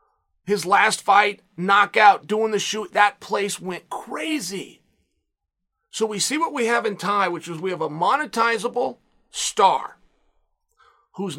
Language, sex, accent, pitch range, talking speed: English, male, American, 200-245 Hz, 140 wpm